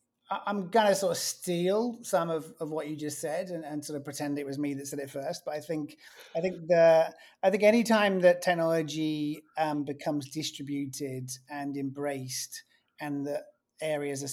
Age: 30-49